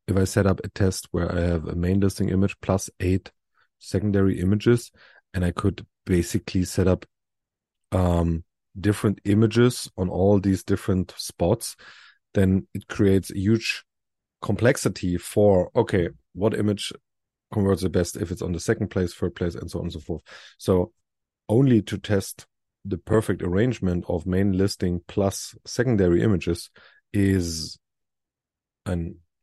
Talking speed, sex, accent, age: 150 wpm, male, German, 30-49